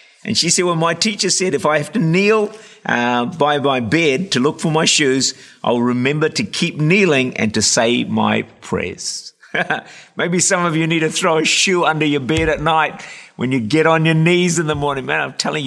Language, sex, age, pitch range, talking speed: English, male, 50-69, 135-180 Hz, 220 wpm